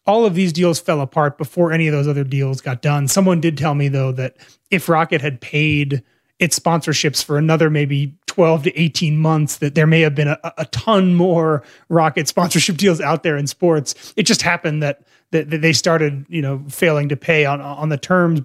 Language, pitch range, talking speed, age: English, 150-180 Hz, 215 wpm, 30-49